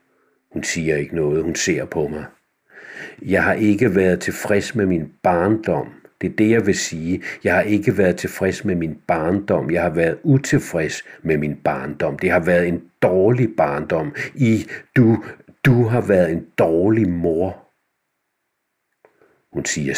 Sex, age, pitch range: male, 60-79, 85-110 Hz